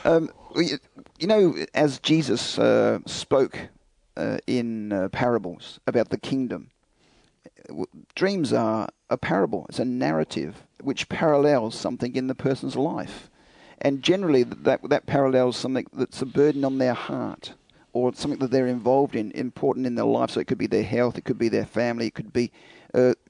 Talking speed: 170 wpm